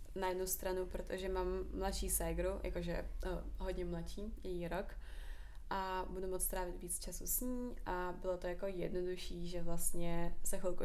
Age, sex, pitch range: 20-39, female, 175-210 Hz